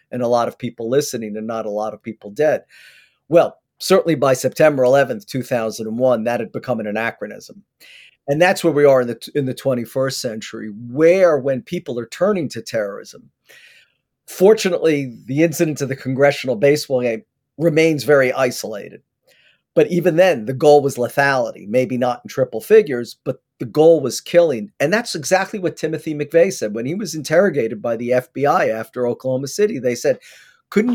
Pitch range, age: 120-160 Hz, 50-69